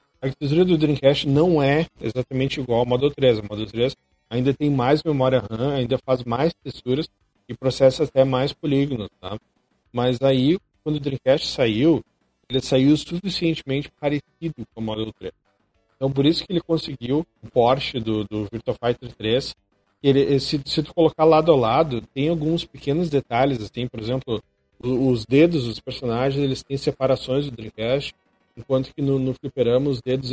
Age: 40-59